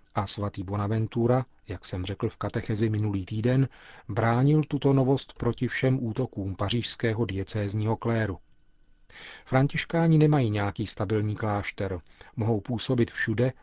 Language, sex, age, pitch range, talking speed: Czech, male, 40-59, 100-125 Hz, 120 wpm